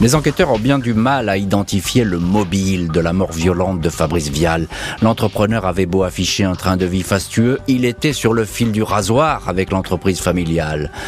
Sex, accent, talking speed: male, French, 195 wpm